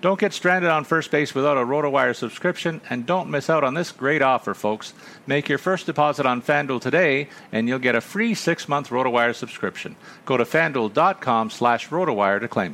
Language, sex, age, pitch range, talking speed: English, male, 50-69, 120-165 Hz, 195 wpm